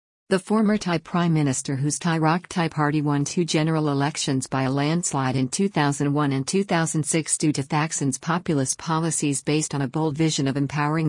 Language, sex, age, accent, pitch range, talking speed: English, female, 50-69, American, 140-165 Hz, 175 wpm